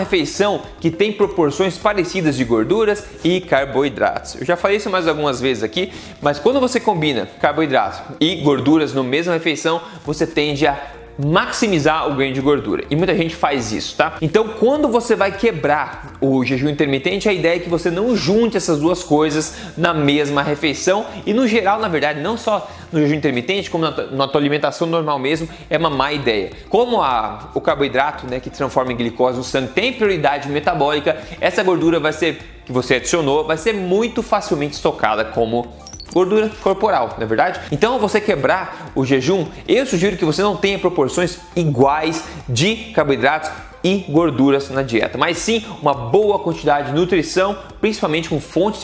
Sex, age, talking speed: male, 20-39, 175 wpm